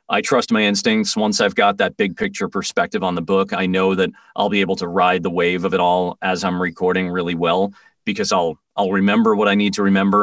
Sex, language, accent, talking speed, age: male, English, American, 240 wpm, 30-49